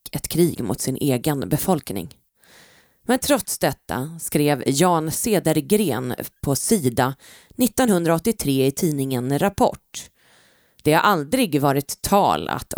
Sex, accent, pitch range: female, native, 140-200 Hz